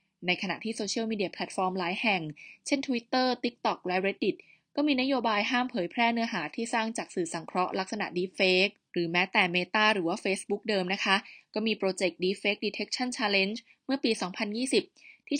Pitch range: 185-230 Hz